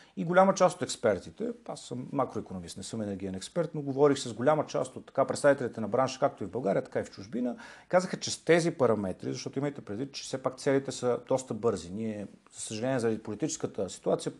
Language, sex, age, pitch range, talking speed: Bulgarian, male, 40-59, 115-165 Hz, 215 wpm